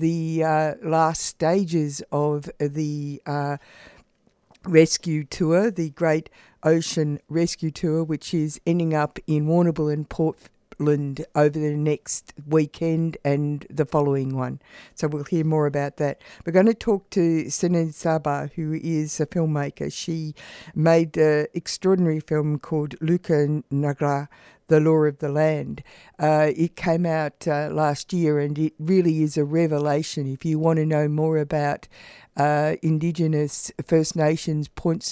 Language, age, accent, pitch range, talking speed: English, 60-79, Australian, 150-165 Hz, 145 wpm